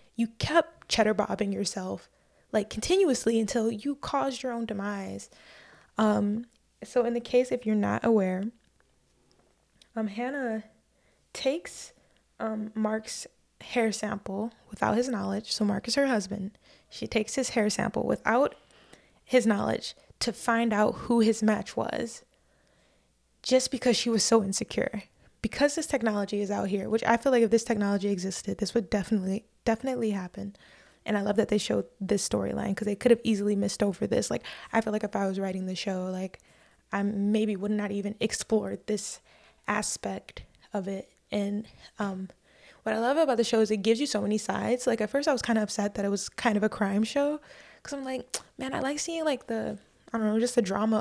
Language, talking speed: English, 190 wpm